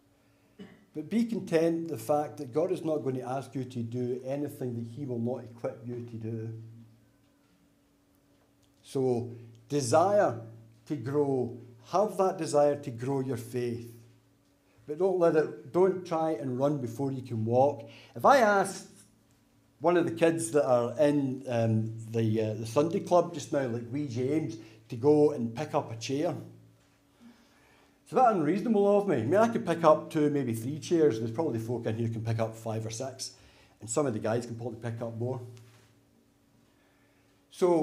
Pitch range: 115-155 Hz